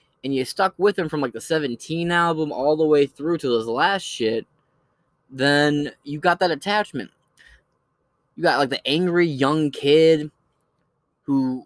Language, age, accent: English, 20-39, American